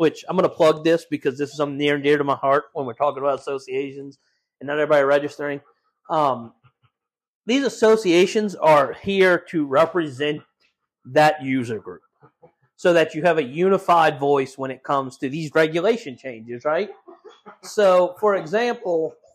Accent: American